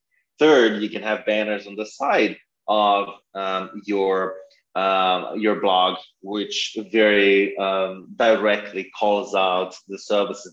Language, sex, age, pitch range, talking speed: English, male, 30-49, 100-115 Hz, 125 wpm